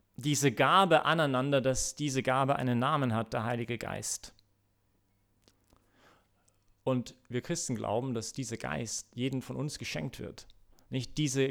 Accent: German